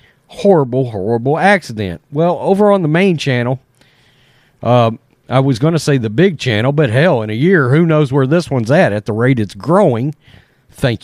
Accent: American